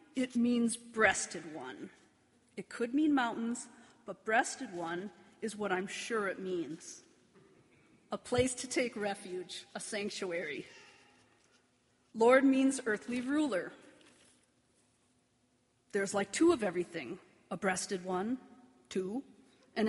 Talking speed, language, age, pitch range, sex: 115 wpm, English, 40-59, 190-255 Hz, female